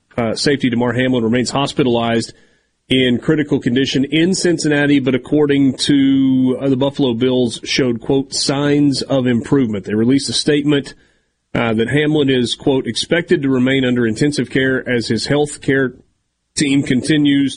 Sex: male